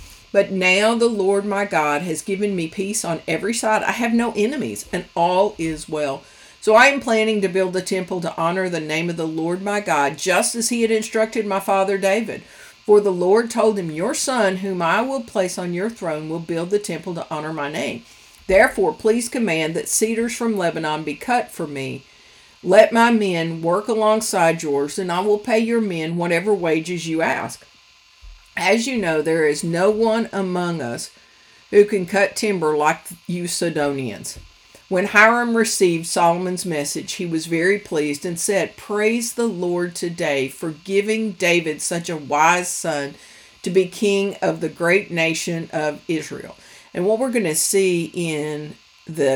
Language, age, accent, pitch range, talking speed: English, 50-69, American, 160-210 Hz, 180 wpm